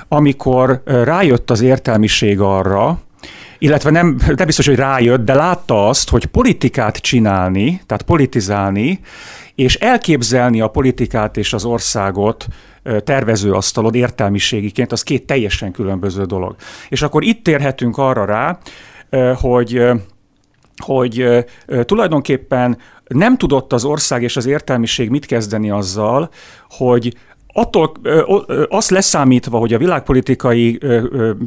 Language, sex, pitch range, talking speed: Hungarian, male, 110-140 Hz, 125 wpm